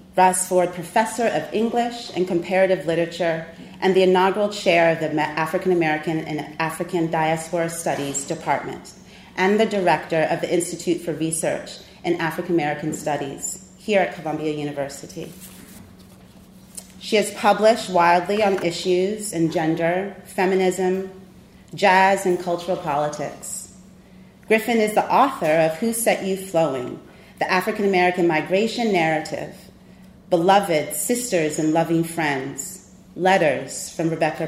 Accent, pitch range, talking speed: American, 160-190 Hz, 125 wpm